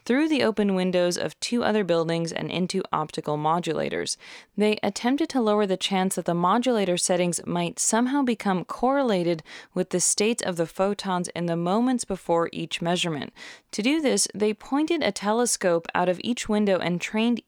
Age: 20-39